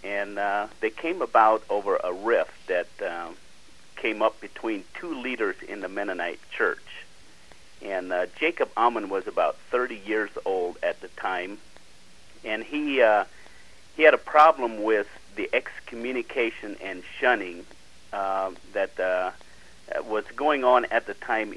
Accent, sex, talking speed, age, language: American, male, 145 wpm, 50-69, English